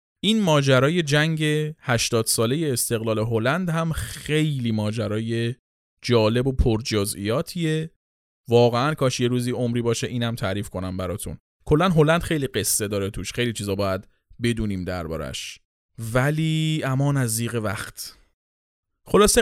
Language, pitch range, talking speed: Persian, 110-155 Hz, 125 wpm